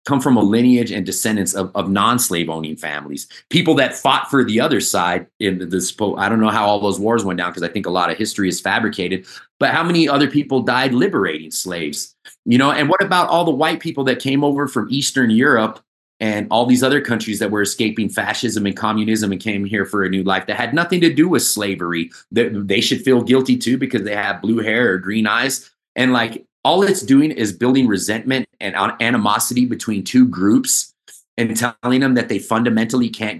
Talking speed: 215 wpm